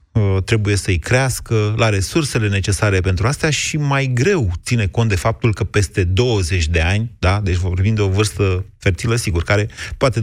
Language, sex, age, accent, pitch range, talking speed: Romanian, male, 30-49, native, 95-120 Hz, 170 wpm